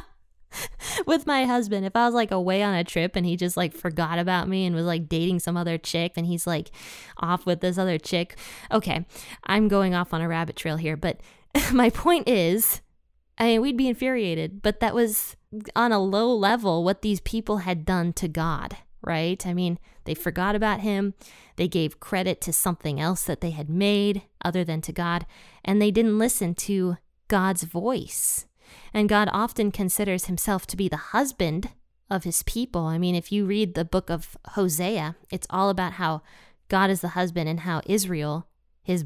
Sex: female